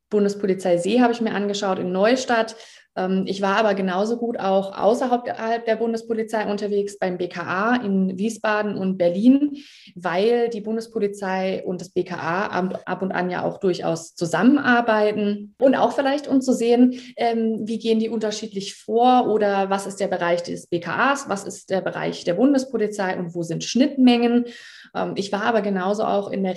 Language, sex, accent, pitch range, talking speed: German, female, German, 190-230 Hz, 165 wpm